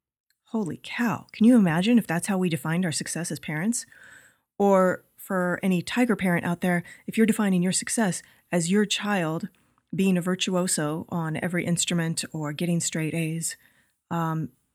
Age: 30-49